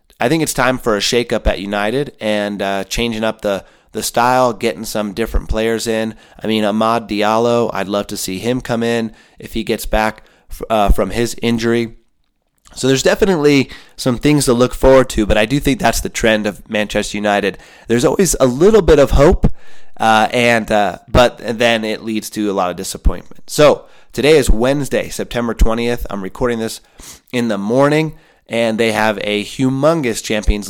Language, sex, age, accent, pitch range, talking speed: English, male, 30-49, American, 105-120 Hz, 190 wpm